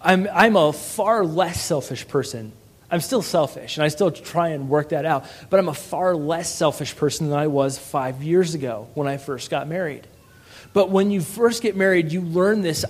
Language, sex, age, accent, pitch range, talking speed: English, male, 30-49, American, 150-185 Hz, 210 wpm